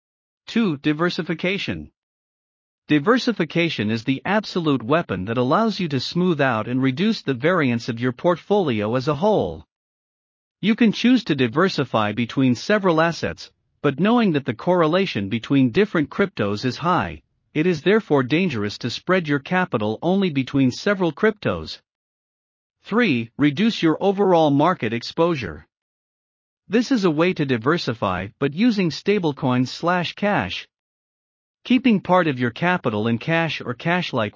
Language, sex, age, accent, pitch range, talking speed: English, male, 50-69, American, 130-185 Hz, 140 wpm